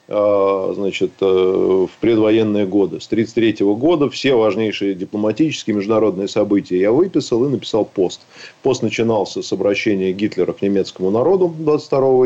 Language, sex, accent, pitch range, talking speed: Russian, male, native, 105-150 Hz, 125 wpm